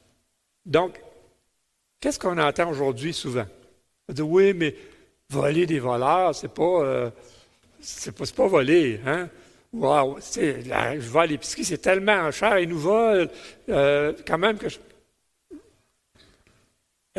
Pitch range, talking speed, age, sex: 160-230 Hz, 120 wpm, 60-79, male